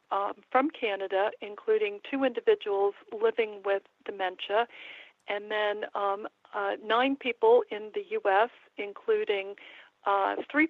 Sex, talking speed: female, 120 wpm